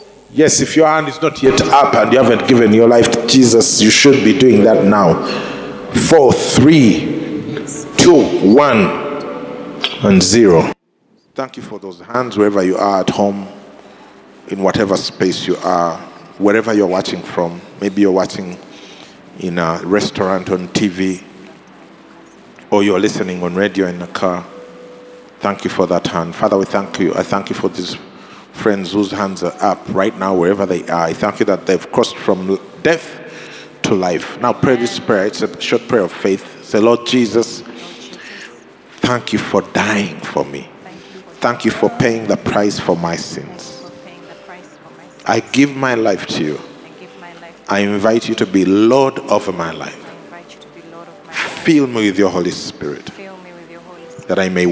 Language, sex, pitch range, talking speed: English, male, 95-125 Hz, 165 wpm